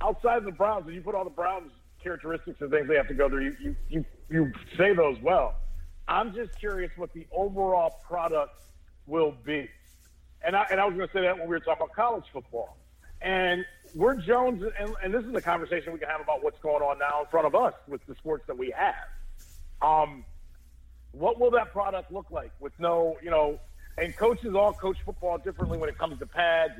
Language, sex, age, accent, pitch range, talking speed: English, male, 50-69, American, 145-195 Hz, 215 wpm